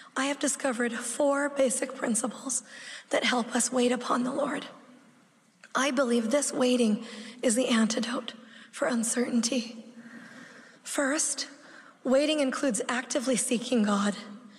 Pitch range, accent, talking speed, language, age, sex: 235-270 Hz, American, 115 wpm, English, 30-49, female